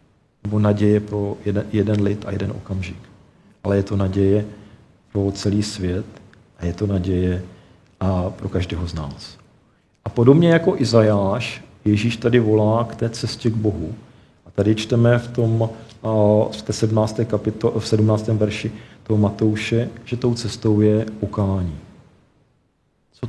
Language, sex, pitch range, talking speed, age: Czech, male, 100-115 Hz, 145 wpm, 40-59